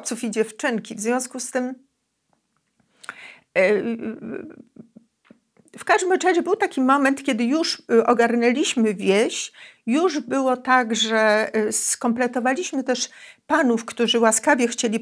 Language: Polish